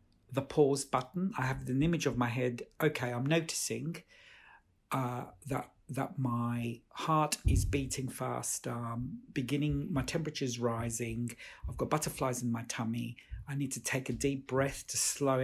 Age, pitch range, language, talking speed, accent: 50-69, 125-160 Hz, English, 160 wpm, British